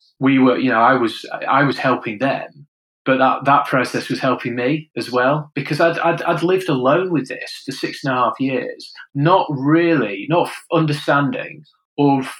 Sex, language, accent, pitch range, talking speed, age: male, English, British, 125-150 Hz, 185 wpm, 20-39